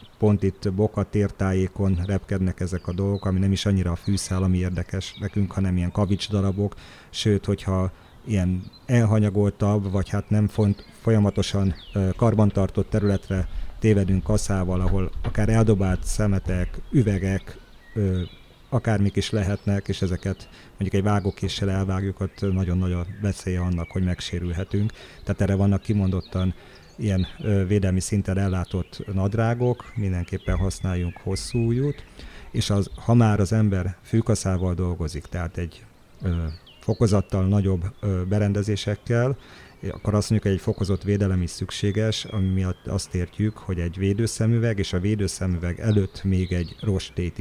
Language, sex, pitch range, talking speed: Hungarian, male, 90-105 Hz, 135 wpm